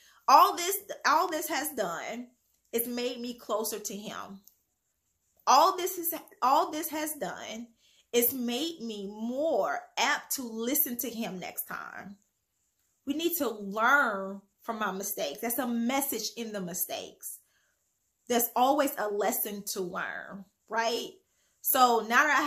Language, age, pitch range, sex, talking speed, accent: English, 20-39, 225-315 Hz, female, 145 wpm, American